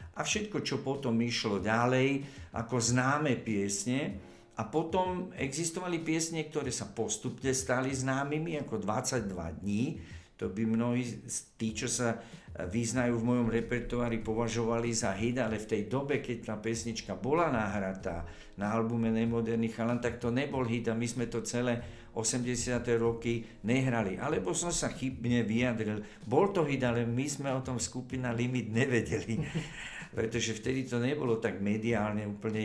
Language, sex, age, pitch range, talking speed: Czech, male, 50-69, 110-130 Hz, 150 wpm